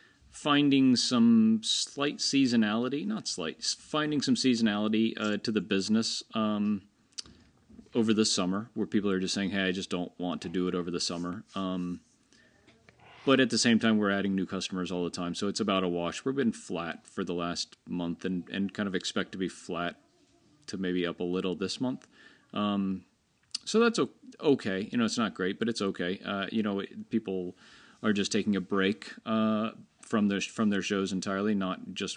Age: 30-49